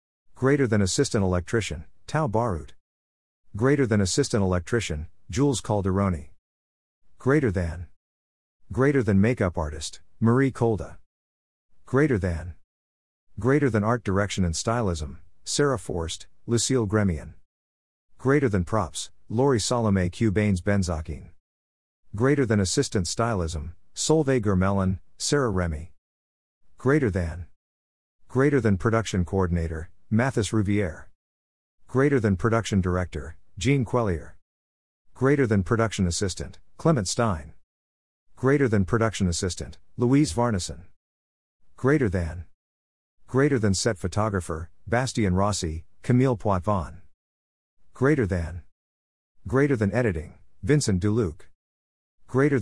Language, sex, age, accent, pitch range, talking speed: English, male, 50-69, American, 80-115 Hz, 105 wpm